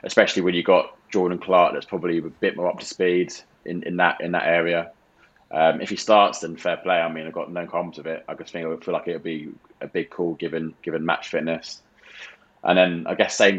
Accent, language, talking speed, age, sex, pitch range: British, English, 245 wpm, 20-39, male, 85-95 Hz